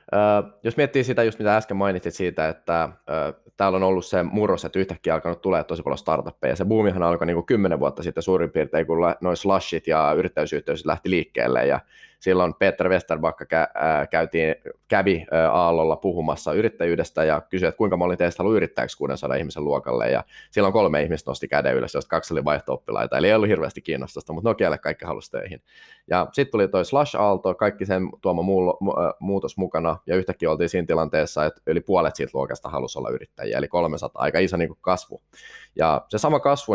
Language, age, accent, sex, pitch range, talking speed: Finnish, 20-39, native, male, 85-105 Hz, 190 wpm